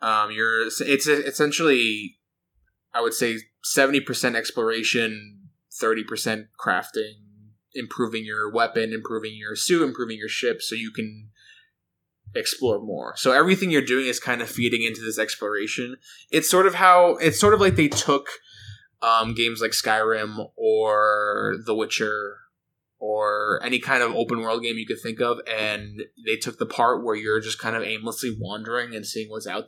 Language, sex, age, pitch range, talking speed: English, male, 20-39, 110-140 Hz, 160 wpm